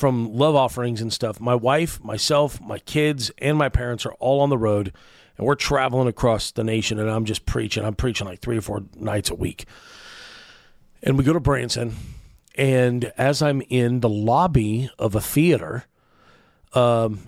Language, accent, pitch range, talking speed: English, American, 110-135 Hz, 180 wpm